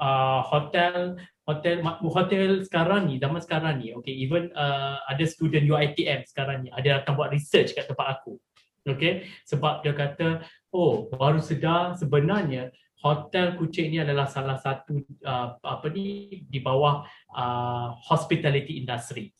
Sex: male